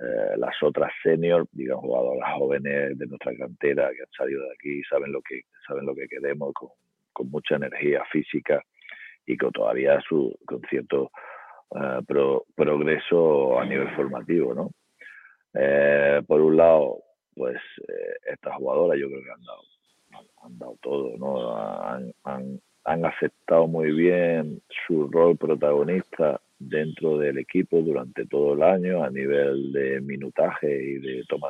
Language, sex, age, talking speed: Spanish, male, 50-69, 150 wpm